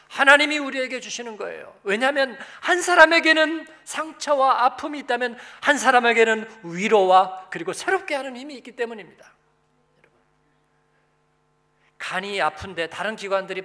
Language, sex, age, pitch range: Korean, male, 40-59, 195-270 Hz